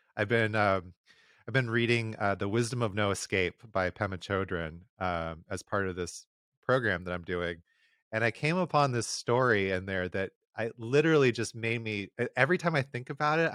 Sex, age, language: male, 30-49, English